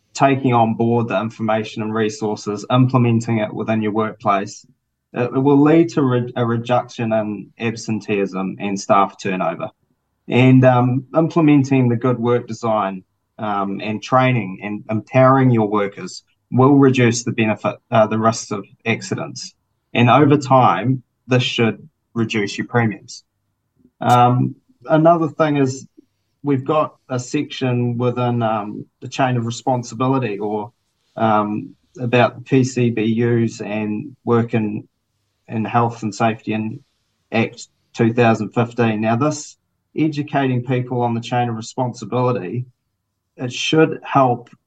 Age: 20-39